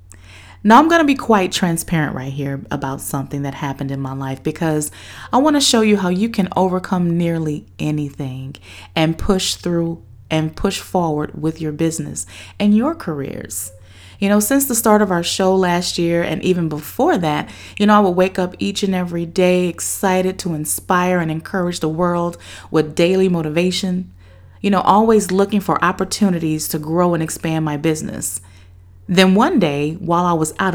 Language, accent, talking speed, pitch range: English, American, 180 wpm, 135-185 Hz